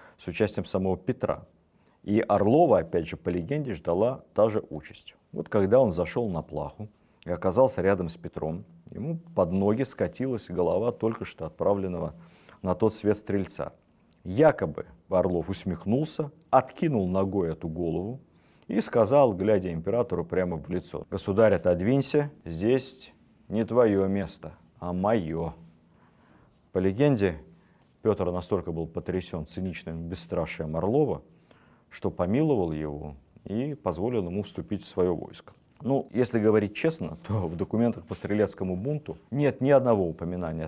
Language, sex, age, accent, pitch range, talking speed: Russian, male, 40-59, native, 85-115 Hz, 135 wpm